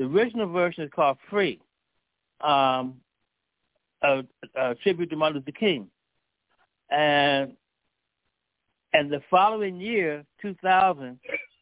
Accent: American